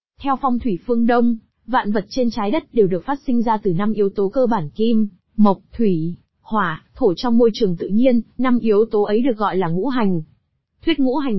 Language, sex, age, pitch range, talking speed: Vietnamese, female, 20-39, 200-250 Hz, 225 wpm